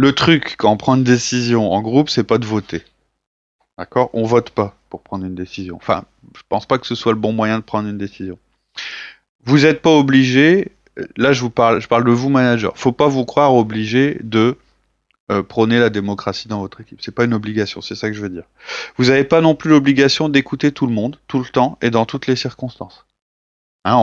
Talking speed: 225 wpm